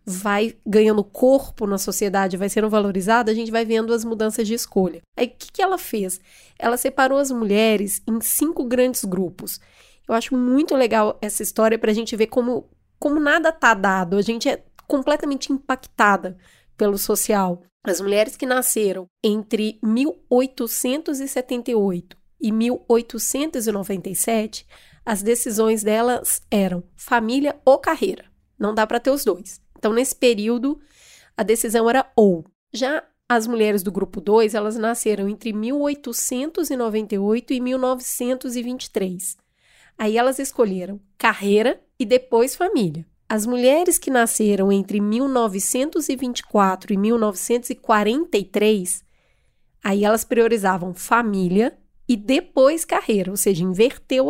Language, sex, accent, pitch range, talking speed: Portuguese, female, Brazilian, 210-260 Hz, 130 wpm